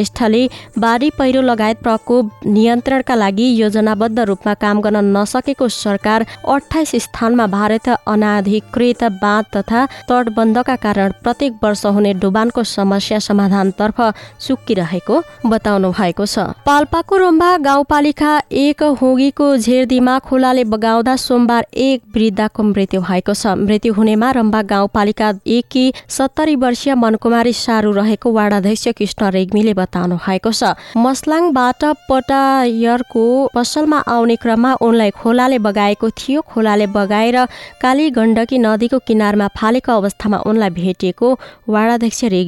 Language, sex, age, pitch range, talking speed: English, female, 20-39, 210-260 Hz, 115 wpm